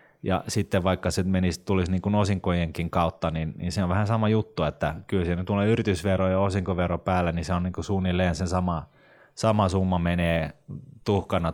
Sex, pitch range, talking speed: male, 85-100 Hz, 185 wpm